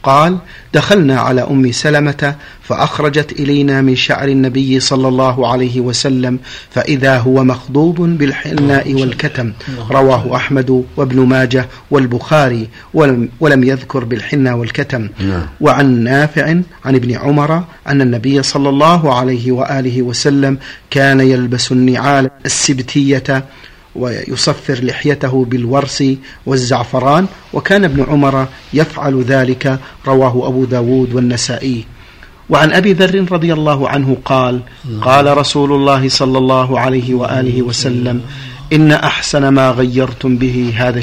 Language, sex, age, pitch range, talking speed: Arabic, male, 50-69, 125-145 Hz, 115 wpm